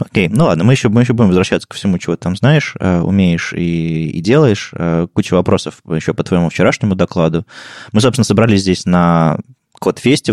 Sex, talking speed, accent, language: male, 200 wpm, native, Russian